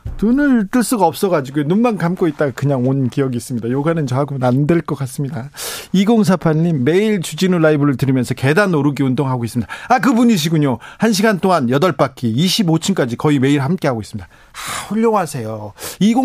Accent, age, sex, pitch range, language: native, 40-59, male, 130-185 Hz, Korean